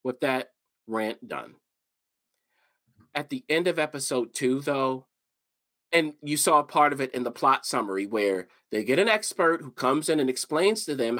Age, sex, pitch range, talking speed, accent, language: 40-59, male, 140-195 Hz, 180 wpm, American, English